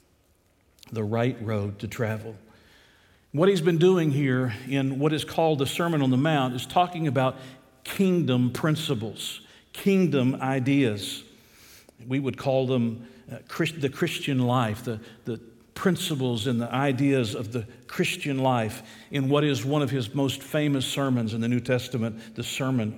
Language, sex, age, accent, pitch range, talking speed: English, male, 50-69, American, 115-145 Hz, 150 wpm